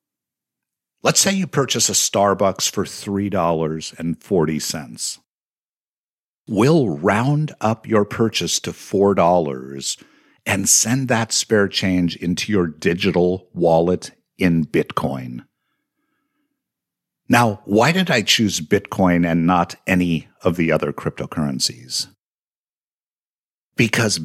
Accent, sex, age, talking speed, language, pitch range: American, male, 50-69, 100 wpm, English, 80-115 Hz